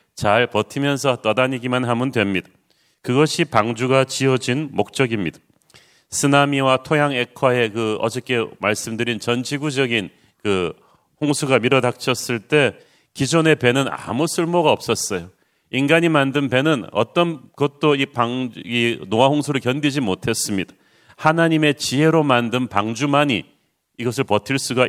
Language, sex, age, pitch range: Korean, male, 40-59, 115-145 Hz